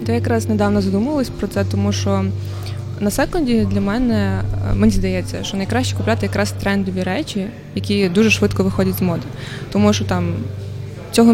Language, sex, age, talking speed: Ukrainian, female, 20-39, 160 wpm